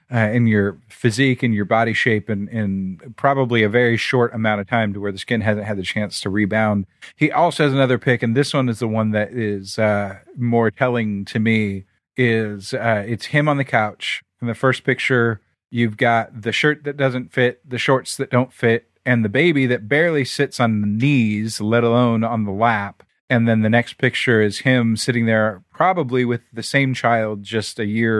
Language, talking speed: English, 210 wpm